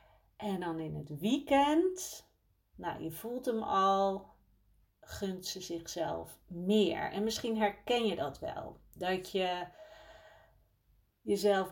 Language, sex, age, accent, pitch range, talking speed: Dutch, female, 40-59, Dutch, 165-215 Hz, 120 wpm